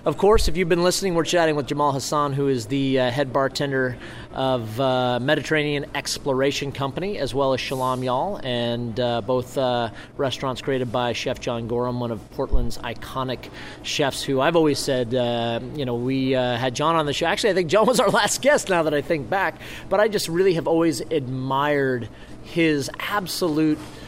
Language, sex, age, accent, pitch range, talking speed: English, male, 30-49, American, 130-165 Hz, 195 wpm